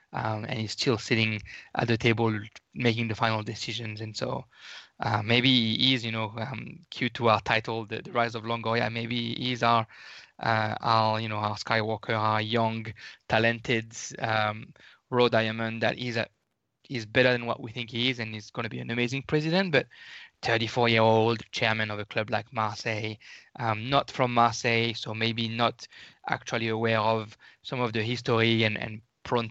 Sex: male